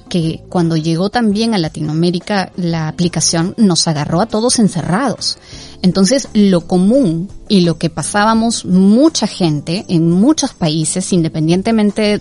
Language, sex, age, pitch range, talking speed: Spanish, female, 30-49, 170-215 Hz, 130 wpm